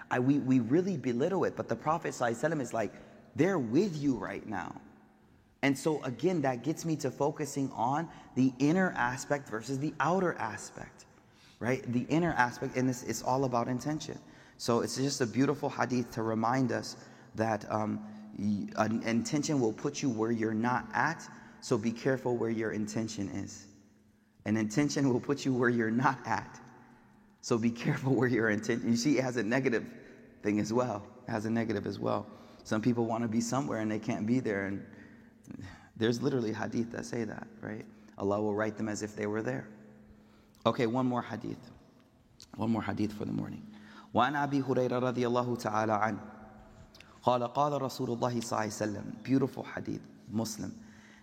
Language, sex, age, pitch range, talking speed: English, male, 30-49, 110-130 Hz, 170 wpm